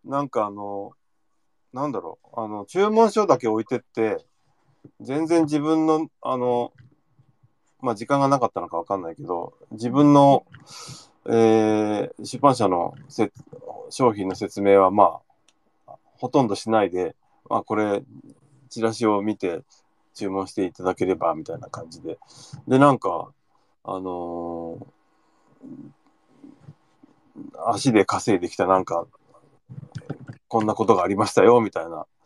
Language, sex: Japanese, male